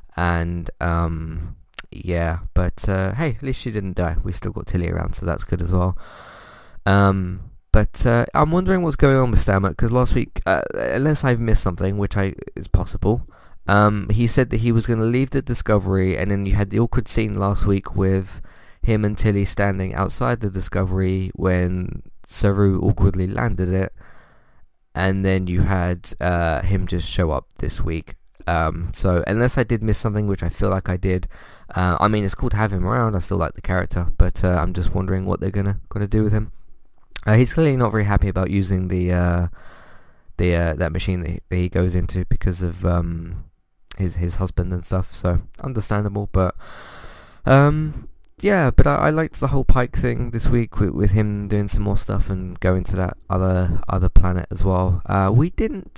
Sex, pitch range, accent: male, 90-105 Hz, British